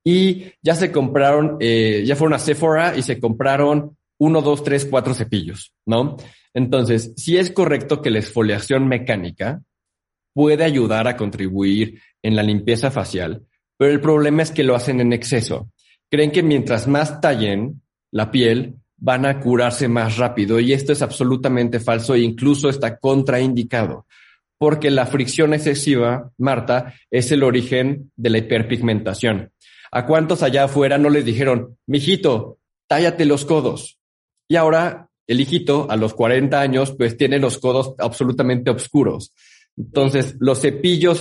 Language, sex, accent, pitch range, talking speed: Spanish, male, Mexican, 115-145 Hz, 155 wpm